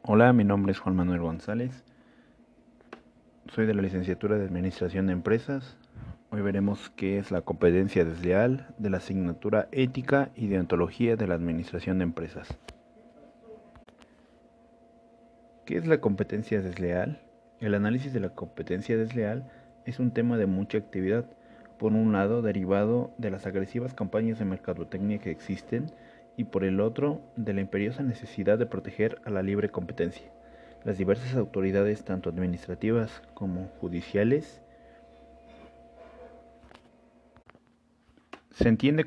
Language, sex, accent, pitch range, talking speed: Spanish, male, Mexican, 95-120 Hz, 130 wpm